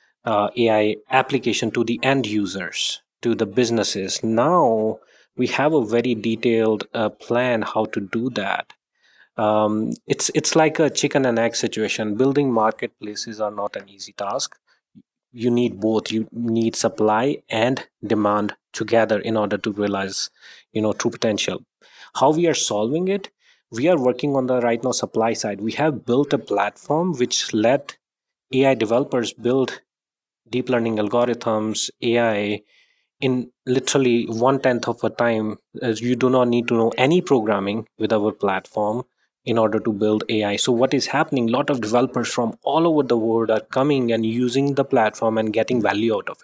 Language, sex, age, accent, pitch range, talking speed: English, male, 30-49, Indian, 110-130 Hz, 170 wpm